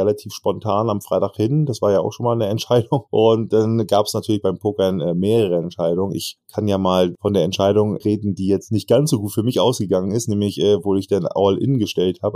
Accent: German